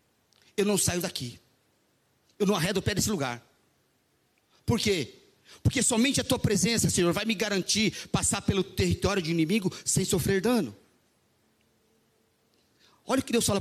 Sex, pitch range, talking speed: male, 155-225 Hz, 155 wpm